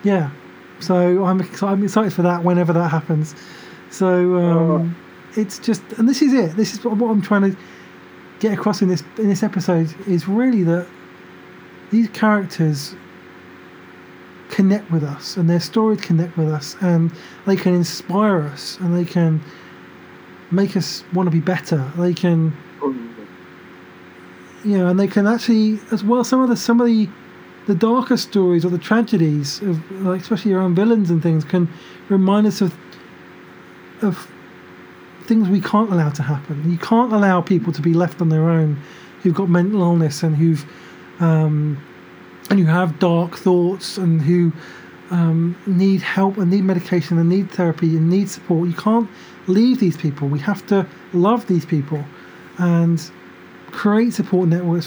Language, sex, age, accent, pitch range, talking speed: English, male, 20-39, British, 145-195 Hz, 165 wpm